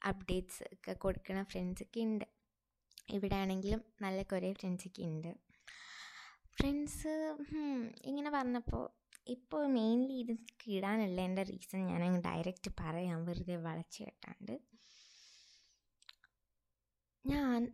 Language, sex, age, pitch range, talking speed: Malayalam, female, 20-39, 185-250 Hz, 85 wpm